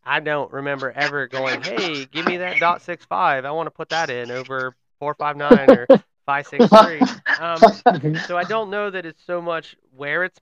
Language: English